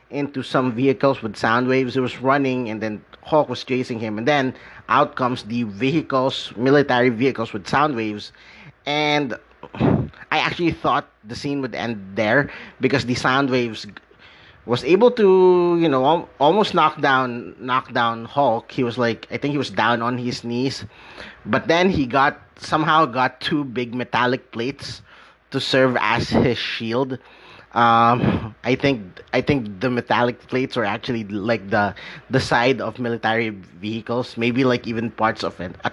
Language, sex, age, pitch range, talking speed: English, male, 30-49, 115-140 Hz, 165 wpm